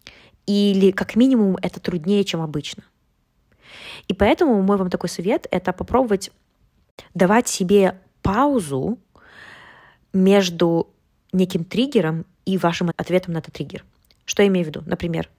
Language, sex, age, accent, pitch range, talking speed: Russian, female, 20-39, native, 170-205 Hz, 135 wpm